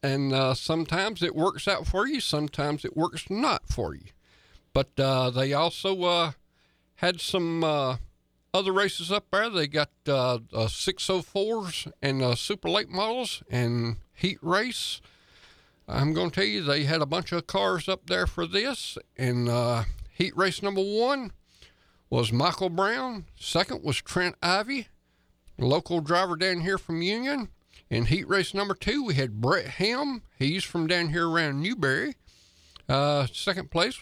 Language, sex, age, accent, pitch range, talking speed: English, male, 60-79, American, 130-195 Hz, 160 wpm